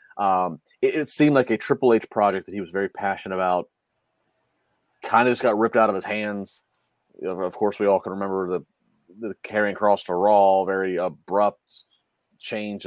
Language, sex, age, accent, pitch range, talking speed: English, male, 30-49, American, 100-125 Hz, 190 wpm